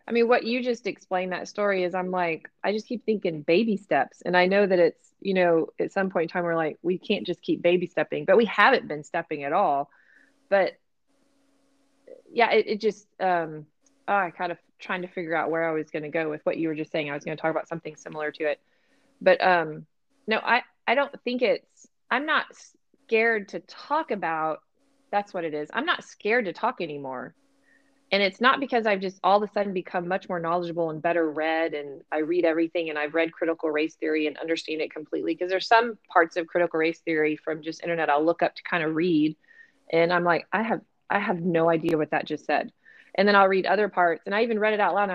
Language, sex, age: English, female, 20-39